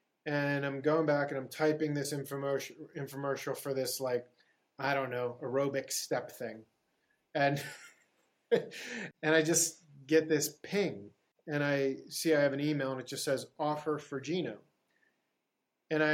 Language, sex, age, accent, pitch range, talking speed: English, male, 30-49, American, 135-155 Hz, 150 wpm